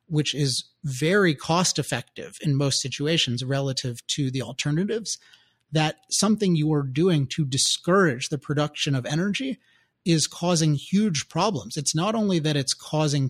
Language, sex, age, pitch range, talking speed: English, male, 30-49, 140-175 Hz, 145 wpm